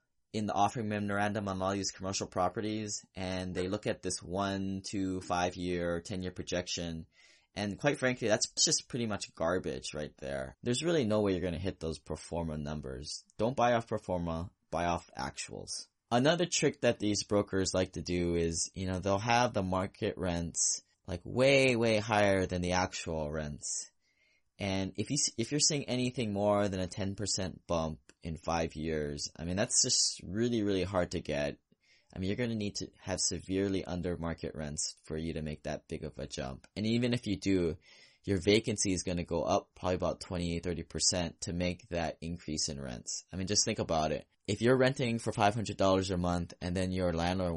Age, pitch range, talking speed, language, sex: 10-29, 85-105 Hz, 200 wpm, English, male